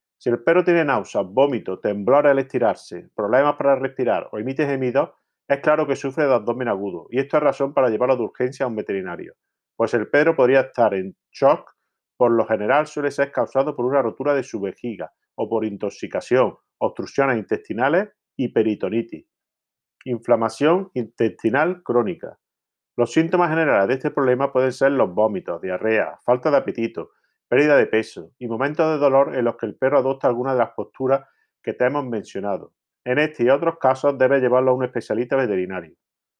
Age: 40-59